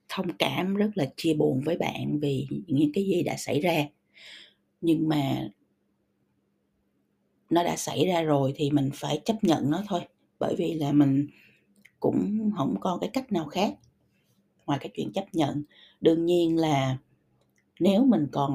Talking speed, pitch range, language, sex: 165 wpm, 140-190 Hz, Vietnamese, female